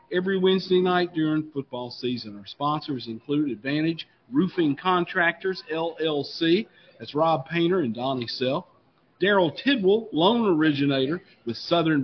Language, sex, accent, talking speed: English, male, American, 125 wpm